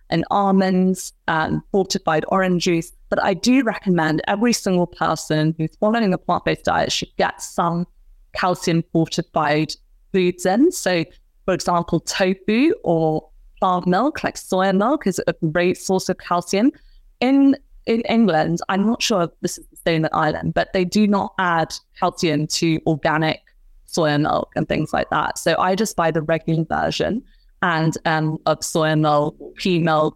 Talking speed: 160 wpm